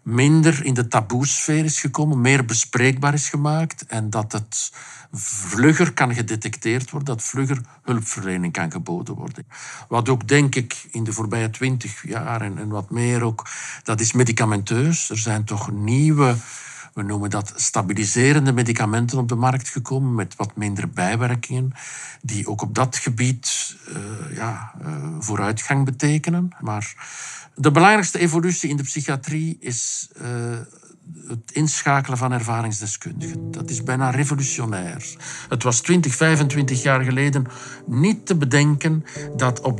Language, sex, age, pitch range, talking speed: Dutch, male, 50-69, 110-145 Hz, 140 wpm